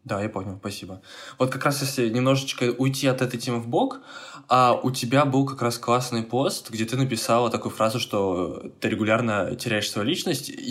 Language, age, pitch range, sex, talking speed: Russian, 20-39, 105-130 Hz, male, 190 wpm